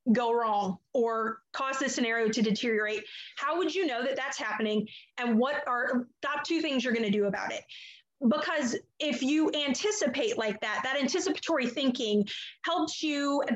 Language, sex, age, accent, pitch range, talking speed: English, female, 30-49, American, 235-295 Hz, 170 wpm